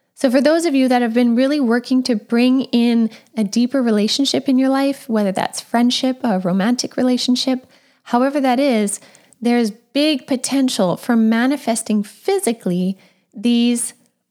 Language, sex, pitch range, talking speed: English, female, 210-260 Hz, 145 wpm